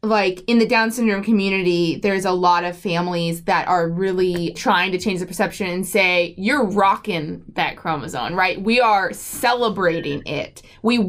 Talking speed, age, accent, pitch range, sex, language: 170 wpm, 20-39, American, 180-225 Hz, female, English